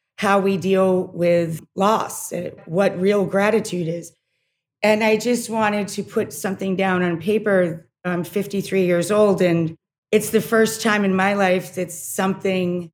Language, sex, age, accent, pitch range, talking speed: English, female, 40-59, American, 170-205 Hz, 155 wpm